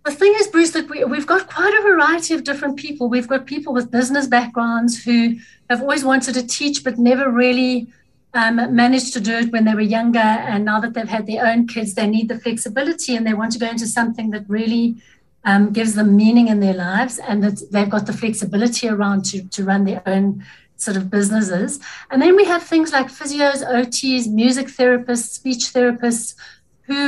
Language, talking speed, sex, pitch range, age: English, 205 wpm, female, 220-255 Hz, 60-79